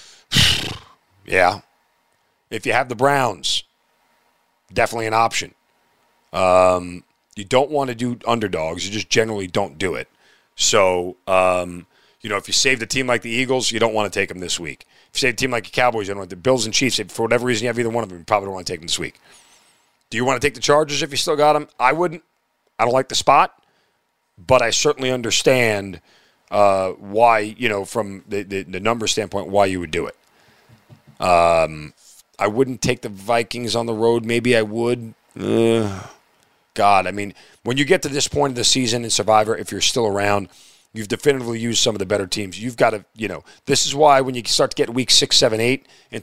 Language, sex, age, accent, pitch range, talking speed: English, male, 40-59, American, 100-125 Hz, 225 wpm